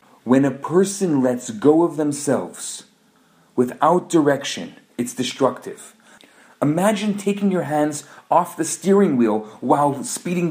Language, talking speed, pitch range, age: English, 120 wpm, 140-185 Hz, 40-59